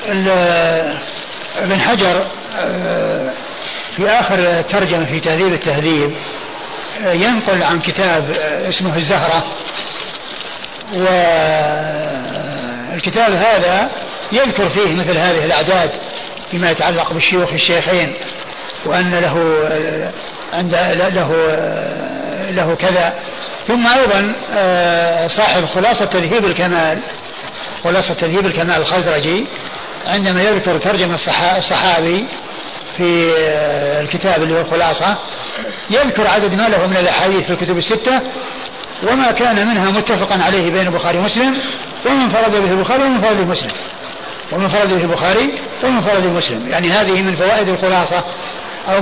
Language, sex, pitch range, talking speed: Arabic, male, 170-205 Hz, 105 wpm